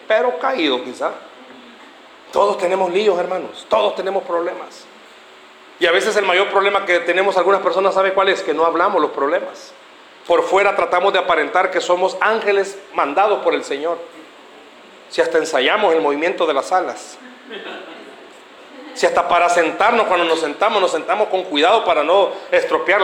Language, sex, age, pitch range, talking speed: Spanish, male, 40-59, 180-240 Hz, 160 wpm